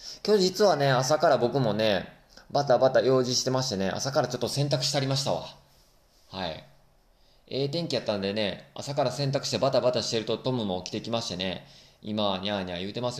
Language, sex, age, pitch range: Japanese, male, 20-39, 95-145 Hz